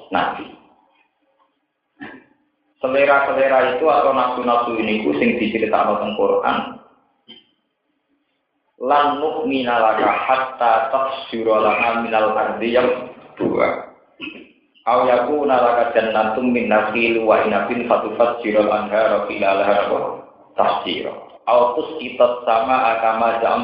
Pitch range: 110-135 Hz